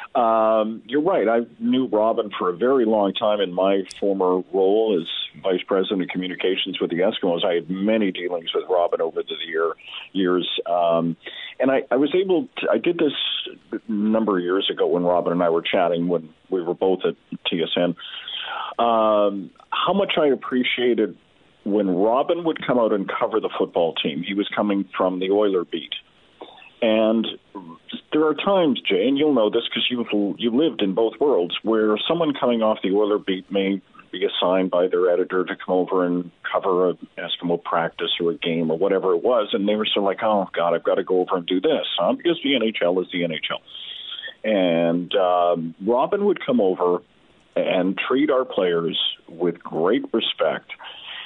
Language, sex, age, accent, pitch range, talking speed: English, male, 40-59, American, 90-125 Hz, 190 wpm